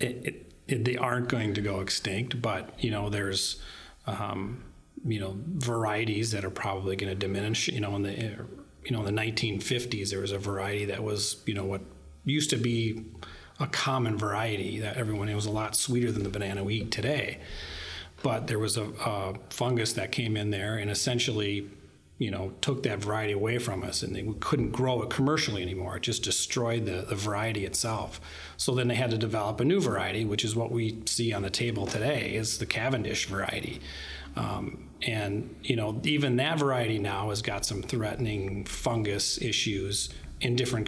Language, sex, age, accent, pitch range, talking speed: English, male, 30-49, American, 100-120 Hz, 195 wpm